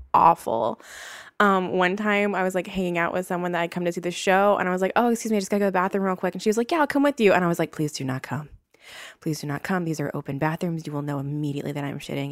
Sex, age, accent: female, 20-39, American